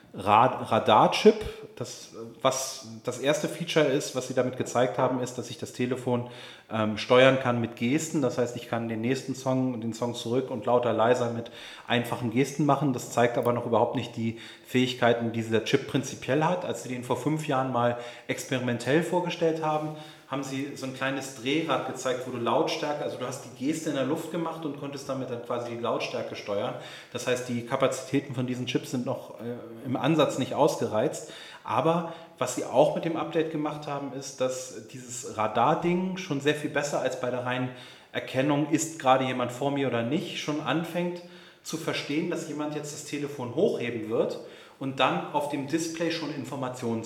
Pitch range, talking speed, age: 120-150 Hz, 195 wpm, 30-49